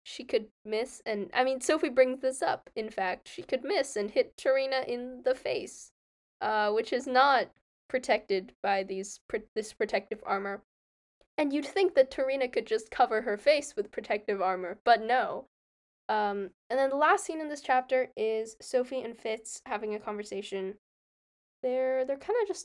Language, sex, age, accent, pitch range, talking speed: English, female, 10-29, American, 205-285 Hz, 180 wpm